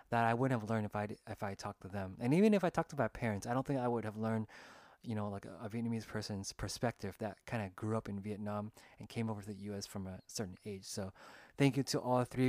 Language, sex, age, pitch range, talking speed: English, male, 20-39, 105-130 Hz, 280 wpm